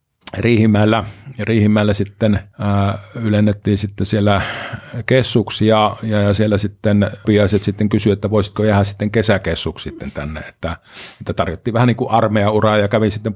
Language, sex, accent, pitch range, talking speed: Finnish, male, native, 100-110 Hz, 130 wpm